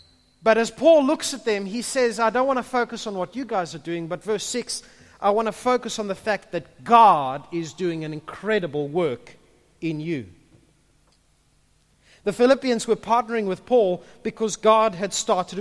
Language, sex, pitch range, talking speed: English, male, 180-245 Hz, 185 wpm